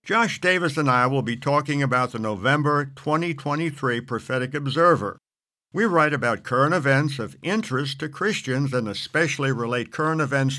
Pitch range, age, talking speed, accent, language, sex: 125-165 Hz, 60-79, 155 wpm, American, English, male